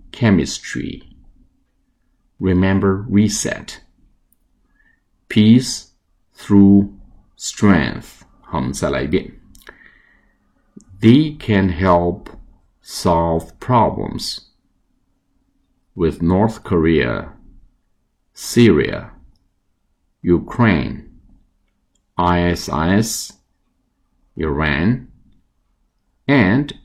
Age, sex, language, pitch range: 50-69, male, Chinese, 85-100 Hz